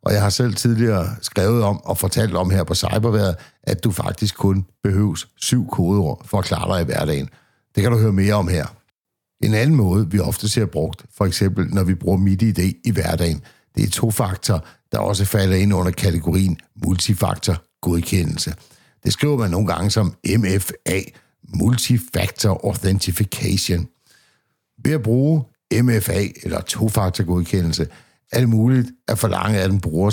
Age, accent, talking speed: 60-79, native, 170 wpm